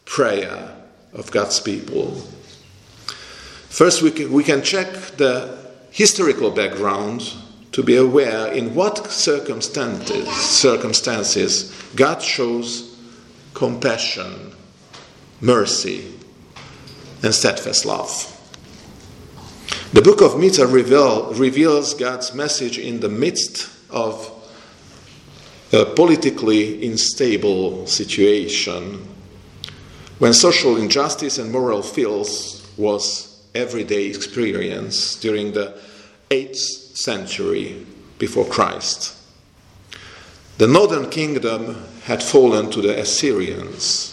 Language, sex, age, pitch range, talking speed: Hungarian, male, 50-69, 105-140 Hz, 90 wpm